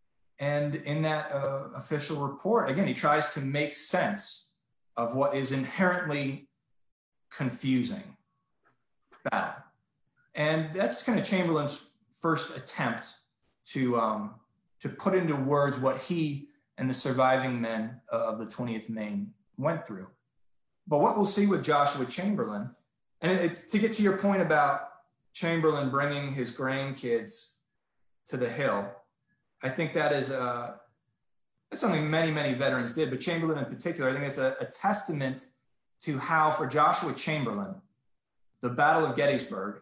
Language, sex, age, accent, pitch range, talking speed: English, male, 30-49, American, 130-160 Hz, 145 wpm